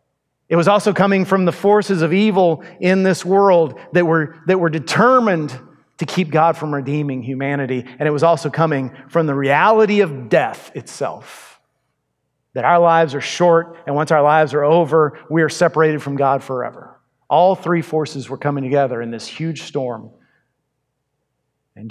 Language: English